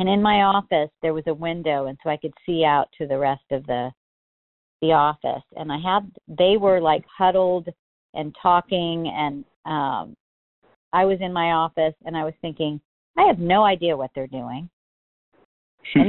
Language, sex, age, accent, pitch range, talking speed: English, female, 50-69, American, 150-200 Hz, 185 wpm